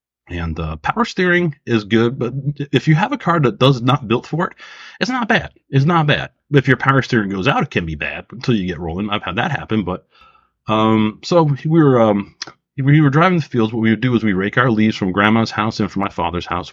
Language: English